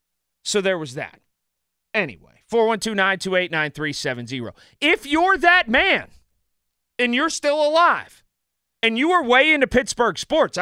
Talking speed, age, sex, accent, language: 120 wpm, 30-49, male, American, English